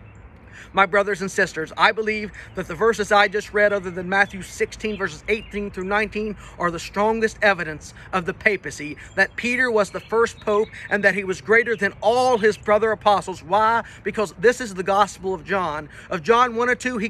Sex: male